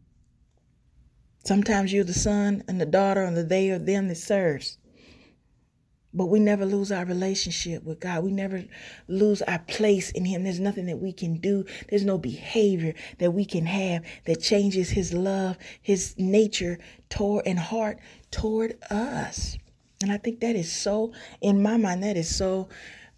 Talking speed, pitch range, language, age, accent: 170 wpm, 160-195 Hz, English, 30-49, American